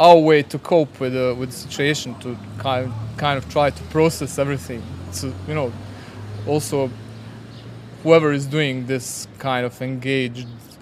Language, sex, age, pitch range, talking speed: English, male, 20-39, 120-145 Hz, 150 wpm